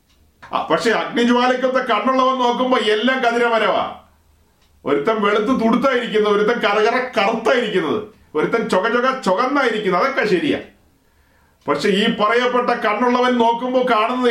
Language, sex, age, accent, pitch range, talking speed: Malayalam, male, 40-59, native, 210-255 Hz, 95 wpm